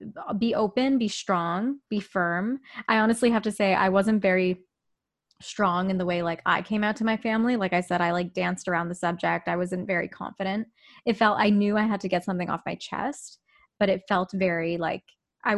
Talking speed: 215 wpm